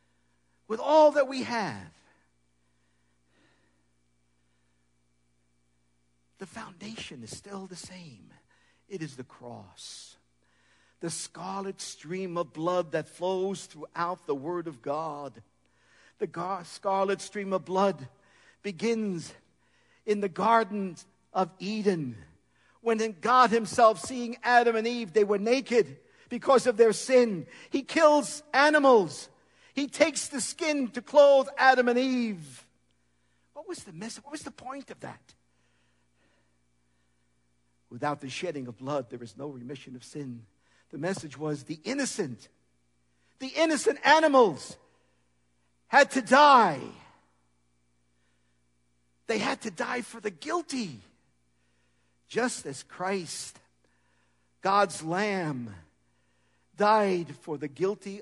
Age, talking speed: 50-69, 115 wpm